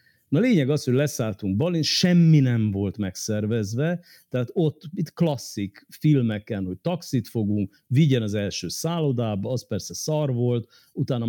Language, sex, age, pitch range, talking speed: Hungarian, male, 50-69, 95-125 Hz, 145 wpm